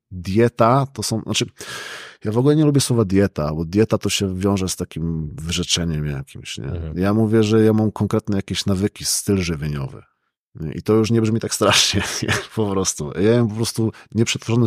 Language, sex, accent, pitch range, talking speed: Polish, male, native, 90-115 Hz, 185 wpm